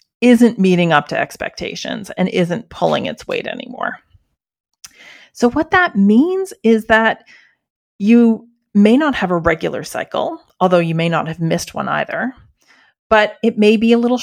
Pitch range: 180-235 Hz